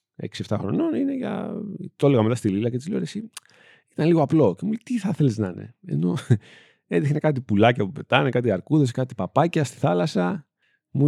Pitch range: 105-150 Hz